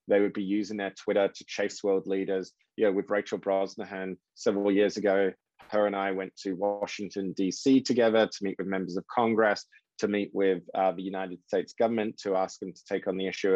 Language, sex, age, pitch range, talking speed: English, male, 20-39, 95-110 Hz, 215 wpm